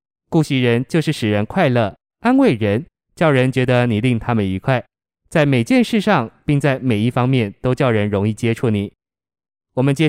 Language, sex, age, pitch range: Chinese, male, 20-39, 115-145 Hz